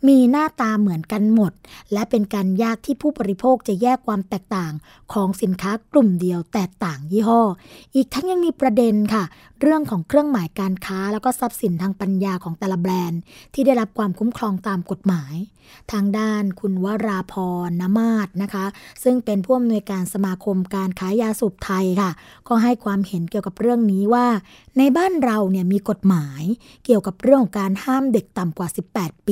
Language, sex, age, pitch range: Thai, female, 20-39, 195-245 Hz